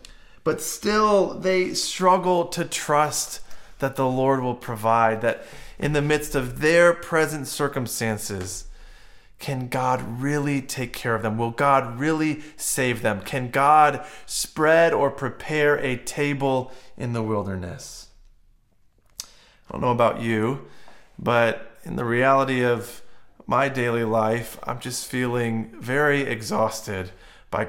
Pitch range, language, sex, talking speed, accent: 110-140 Hz, English, male, 130 wpm, American